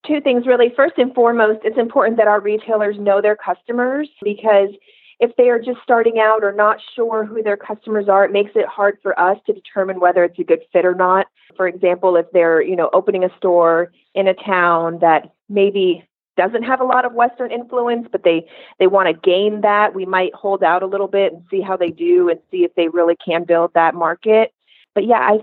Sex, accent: female, American